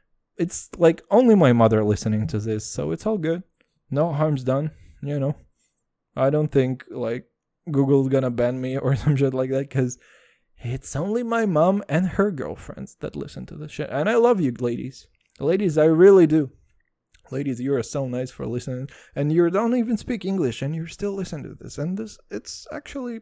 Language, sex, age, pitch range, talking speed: English, male, 20-39, 125-195 Hz, 195 wpm